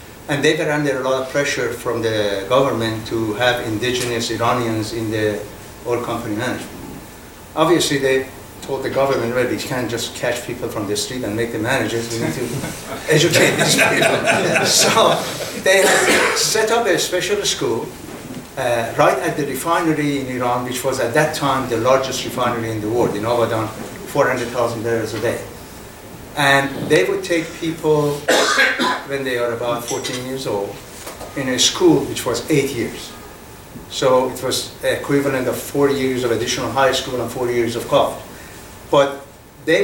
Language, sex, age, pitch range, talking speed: English, male, 60-79, 115-140 Hz, 170 wpm